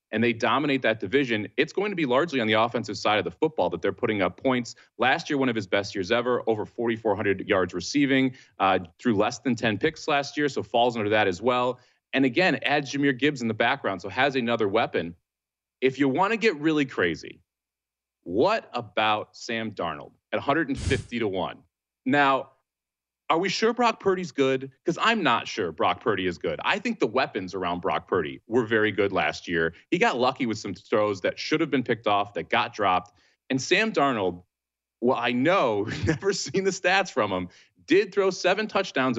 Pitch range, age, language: 100-155 Hz, 30-49, English